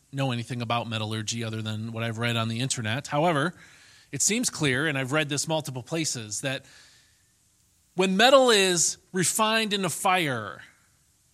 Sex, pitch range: male, 125-195 Hz